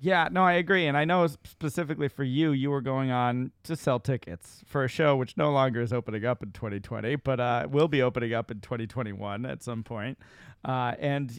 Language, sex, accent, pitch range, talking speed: English, male, American, 110-145 Hz, 215 wpm